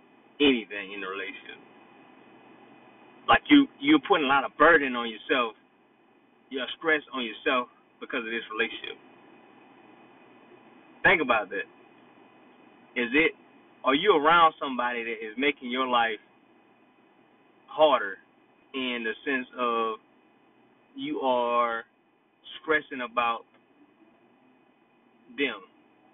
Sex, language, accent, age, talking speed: male, English, American, 20-39, 105 wpm